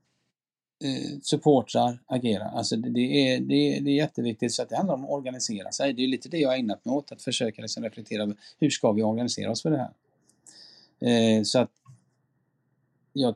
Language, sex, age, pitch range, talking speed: Swedish, male, 30-49, 110-135 Hz, 195 wpm